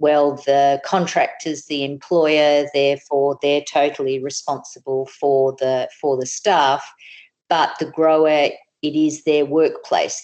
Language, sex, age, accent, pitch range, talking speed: English, female, 50-69, Australian, 140-155 Hz, 125 wpm